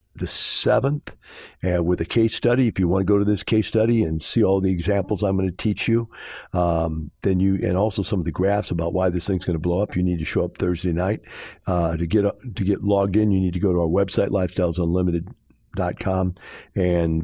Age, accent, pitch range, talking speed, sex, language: 50-69, American, 85-105 Hz, 235 wpm, male, English